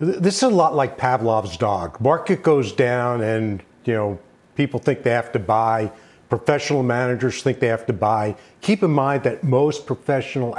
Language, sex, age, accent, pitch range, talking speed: English, male, 50-69, American, 120-150 Hz, 180 wpm